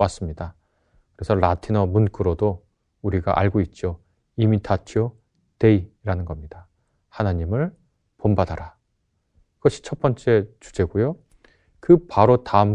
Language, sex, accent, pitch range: Korean, male, native, 95-120 Hz